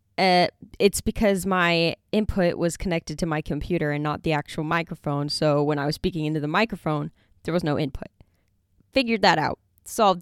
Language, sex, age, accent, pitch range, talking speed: English, female, 10-29, American, 150-215 Hz, 180 wpm